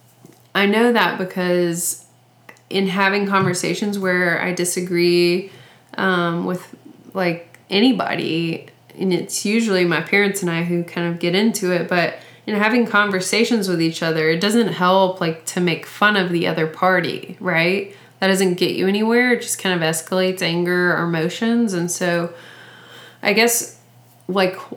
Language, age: English, 20-39